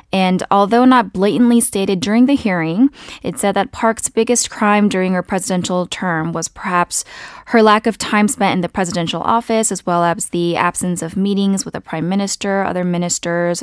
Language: English